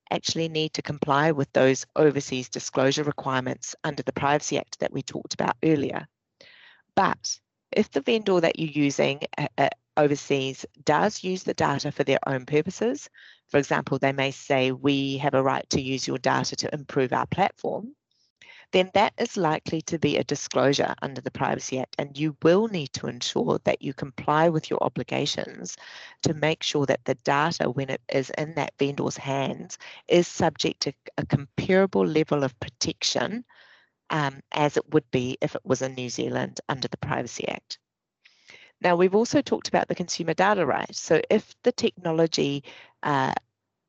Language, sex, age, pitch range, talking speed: English, female, 30-49, 135-170 Hz, 170 wpm